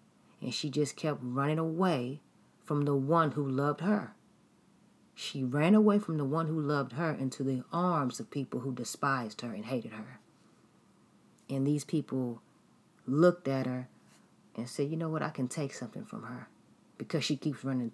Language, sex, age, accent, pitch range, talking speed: English, female, 40-59, American, 130-160 Hz, 175 wpm